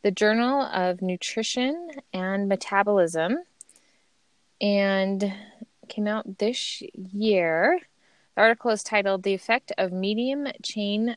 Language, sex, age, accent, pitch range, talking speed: English, female, 20-39, American, 175-225 Hz, 100 wpm